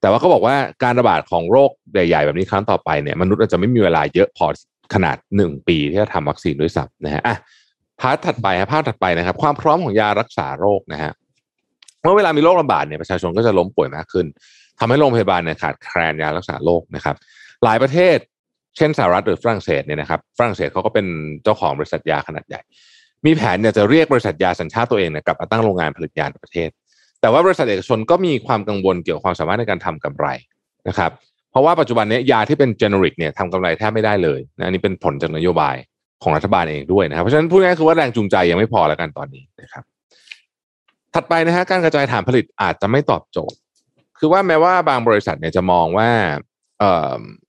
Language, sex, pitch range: Thai, male, 85-120 Hz